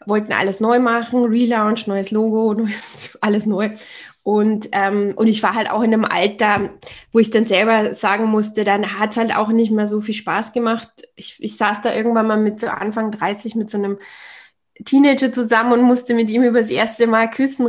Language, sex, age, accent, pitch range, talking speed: German, female, 20-39, German, 215-250 Hz, 205 wpm